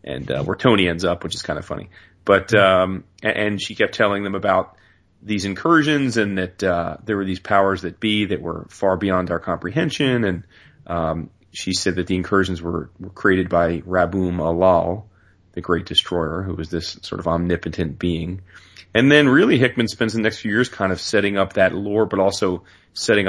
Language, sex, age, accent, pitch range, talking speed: English, male, 30-49, American, 90-105 Hz, 200 wpm